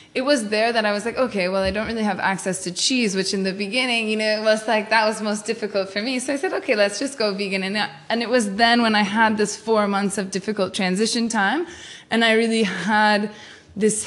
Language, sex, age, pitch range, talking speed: English, female, 20-39, 185-220 Hz, 250 wpm